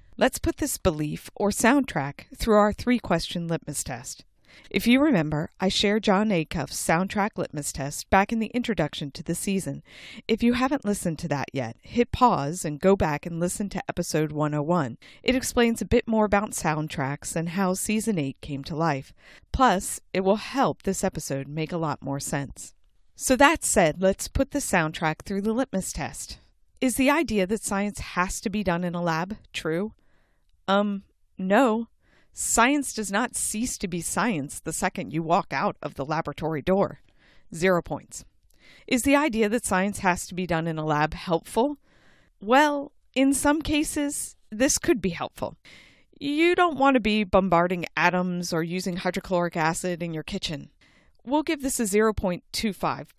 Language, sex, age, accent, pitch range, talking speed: English, female, 40-59, American, 160-225 Hz, 175 wpm